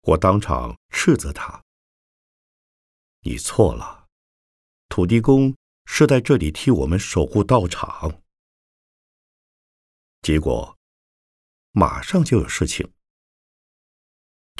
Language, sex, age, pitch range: Chinese, male, 50-69, 70-115 Hz